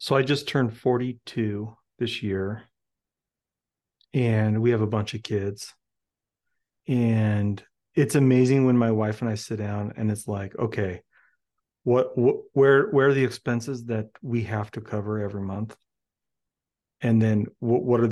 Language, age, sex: English, 40-59, male